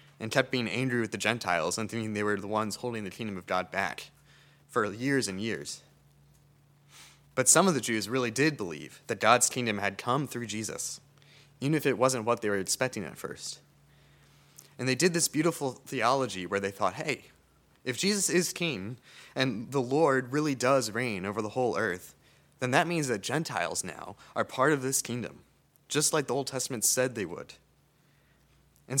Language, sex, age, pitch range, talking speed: English, male, 20-39, 110-145 Hz, 190 wpm